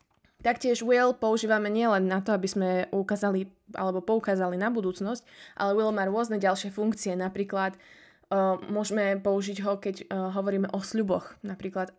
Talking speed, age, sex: 150 wpm, 20-39, female